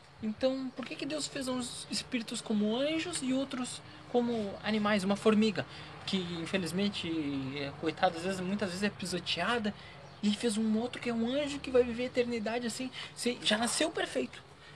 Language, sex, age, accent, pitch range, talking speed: Portuguese, male, 20-39, Brazilian, 160-240 Hz, 170 wpm